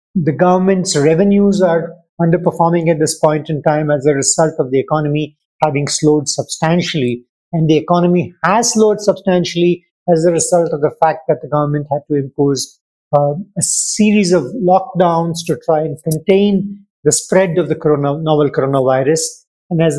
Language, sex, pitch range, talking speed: English, male, 150-180 Hz, 160 wpm